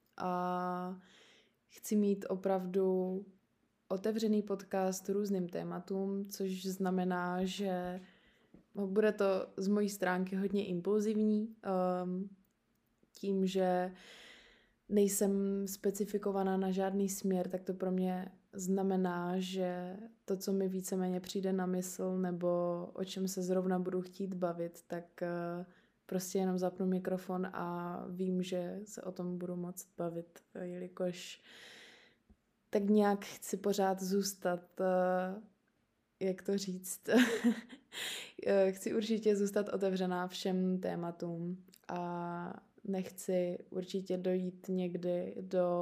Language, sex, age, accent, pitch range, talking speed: Czech, female, 20-39, native, 180-195 Hz, 105 wpm